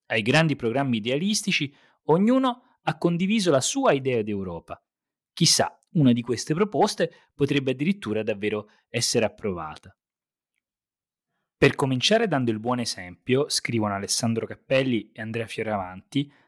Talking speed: 120 wpm